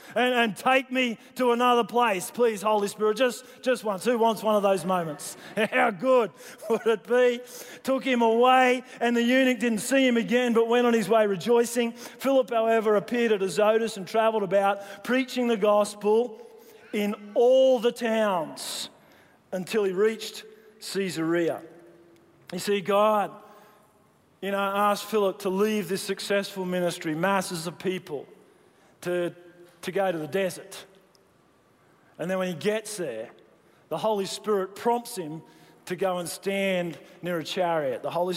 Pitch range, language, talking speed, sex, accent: 185-235 Hz, English, 155 wpm, male, Australian